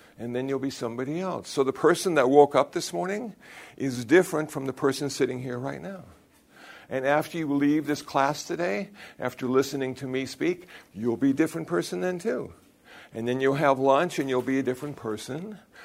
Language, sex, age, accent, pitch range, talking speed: English, male, 60-79, American, 130-175 Hz, 200 wpm